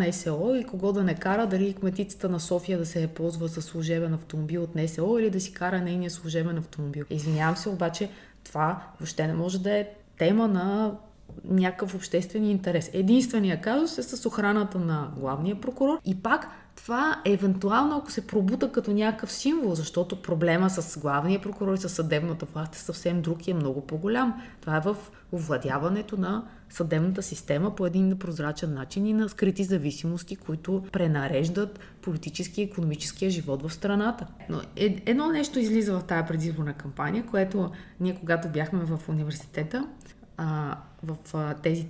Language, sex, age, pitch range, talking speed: Bulgarian, female, 20-39, 165-210 Hz, 170 wpm